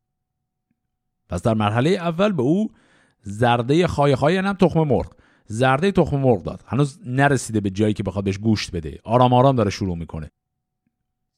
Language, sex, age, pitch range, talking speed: Persian, male, 50-69, 100-140 Hz, 155 wpm